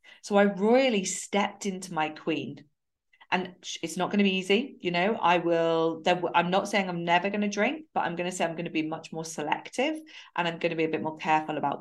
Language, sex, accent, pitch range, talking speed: English, female, British, 160-210 Hz, 245 wpm